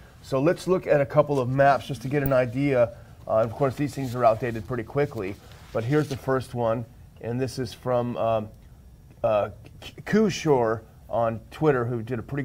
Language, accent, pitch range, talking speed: English, American, 115-140 Hz, 195 wpm